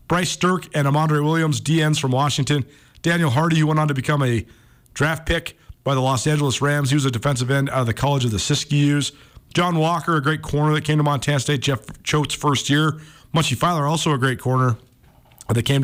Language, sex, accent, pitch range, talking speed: English, male, American, 120-150 Hz, 215 wpm